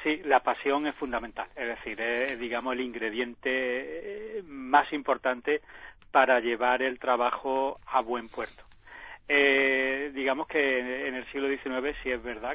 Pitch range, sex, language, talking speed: 120-145 Hz, male, Spanish, 145 wpm